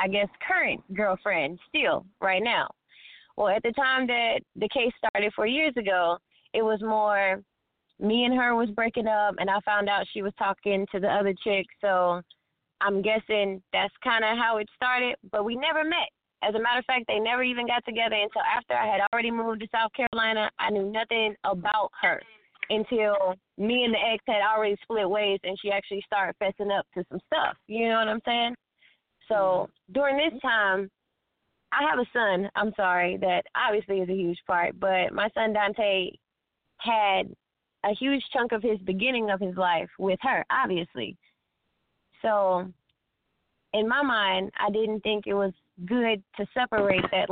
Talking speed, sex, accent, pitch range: 185 wpm, female, American, 195-230 Hz